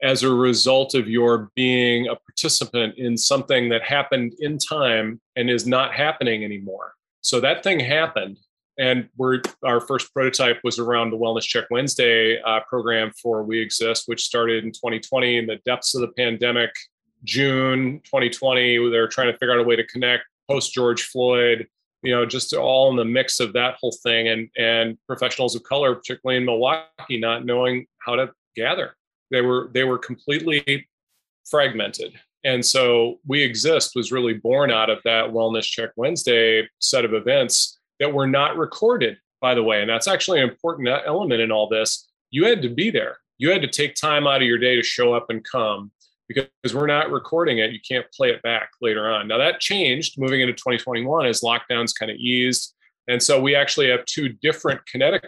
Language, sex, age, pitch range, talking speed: English, male, 30-49, 115-130 Hz, 190 wpm